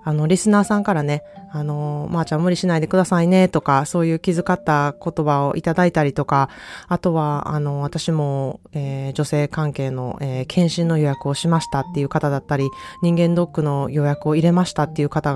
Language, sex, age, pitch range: Japanese, female, 20-39, 140-175 Hz